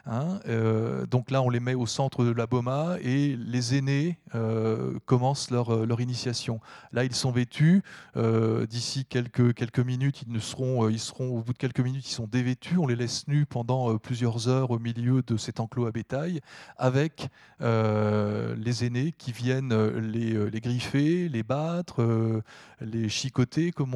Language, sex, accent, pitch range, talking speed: French, male, French, 115-145 Hz, 175 wpm